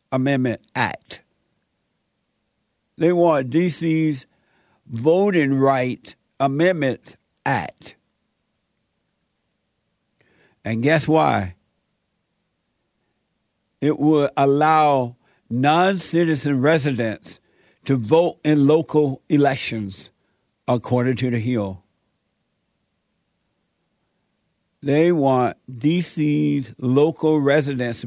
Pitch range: 120-150 Hz